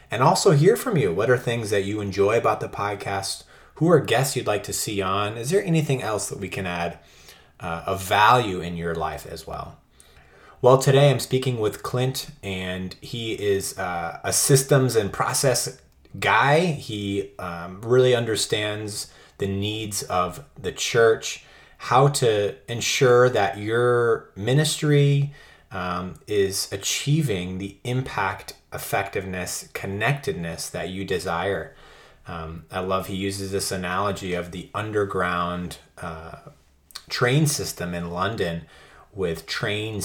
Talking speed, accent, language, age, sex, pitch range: 140 wpm, American, English, 30-49, male, 90-125 Hz